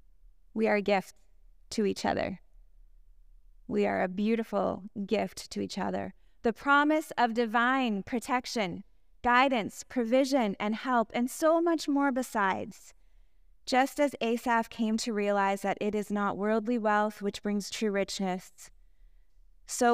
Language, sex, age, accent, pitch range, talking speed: English, female, 20-39, American, 200-240 Hz, 140 wpm